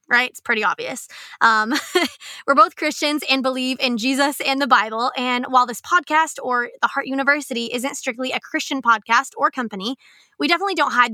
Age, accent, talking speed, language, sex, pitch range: 20-39, American, 185 wpm, English, female, 240-290 Hz